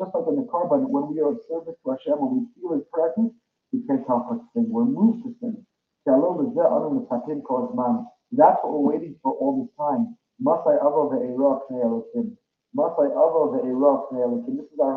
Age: 40-59